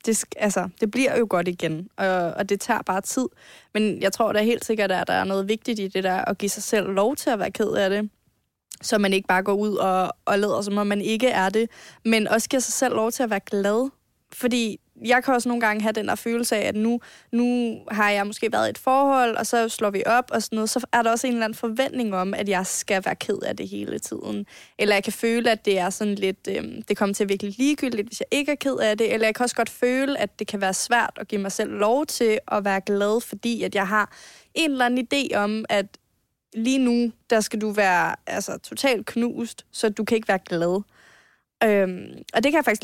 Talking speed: 250 wpm